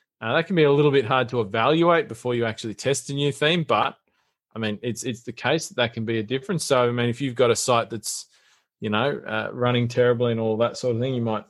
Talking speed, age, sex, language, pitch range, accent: 270 wpm, 20-39, male, English, 115-145 Hz, Australian